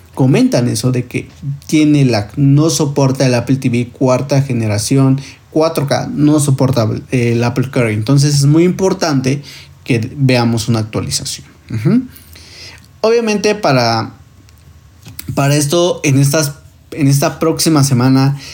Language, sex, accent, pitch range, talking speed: Spanish, male, Mexican, 120-155 Hz, 125 wpm